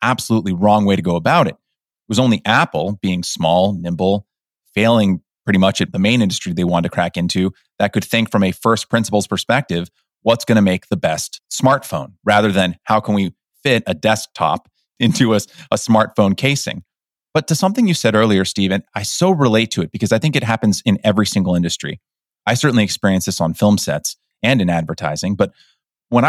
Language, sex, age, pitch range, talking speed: English, male, 30-49, 100-125 Hz, 200 wpm